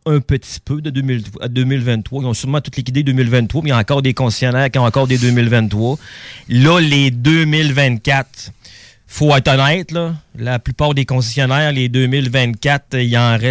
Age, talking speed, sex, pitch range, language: 30-49, 160 wpm, male, 125-150 Hz, French